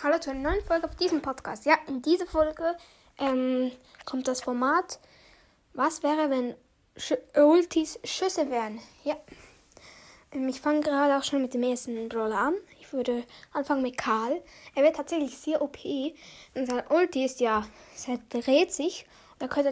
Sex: female